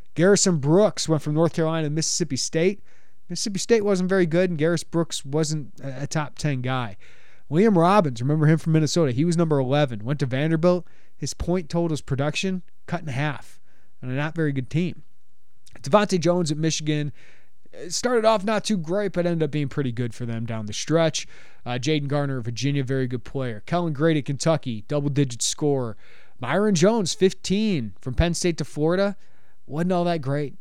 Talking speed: 175 wpm